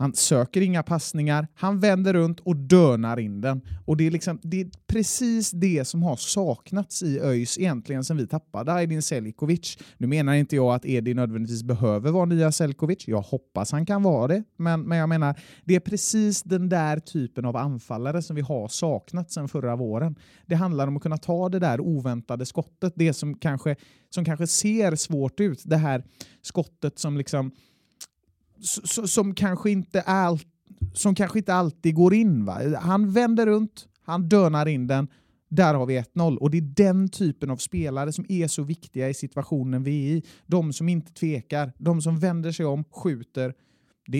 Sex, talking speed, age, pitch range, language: male, 185 wpm, 30-49, 135-175 Hz, Swedish